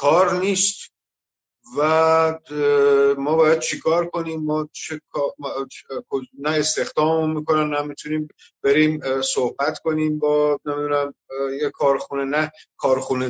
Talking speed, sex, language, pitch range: 115 wpm, male, Persian, 145-190 Hz